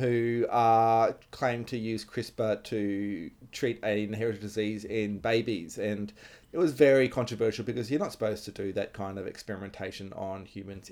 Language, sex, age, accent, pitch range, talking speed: English, male, 30-49, Australian, 105-140 Hz, 165 wpm